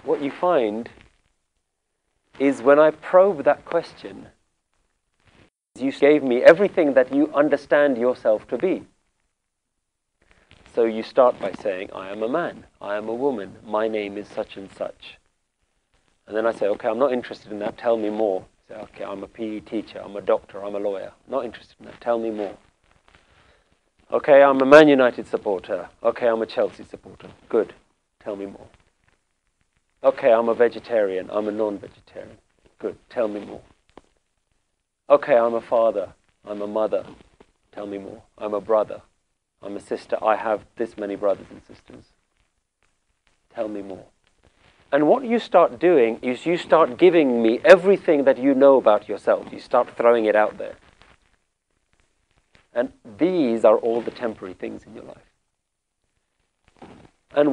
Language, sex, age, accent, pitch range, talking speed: English, male, 40-59, British, 105-140 Hz, 160 wpm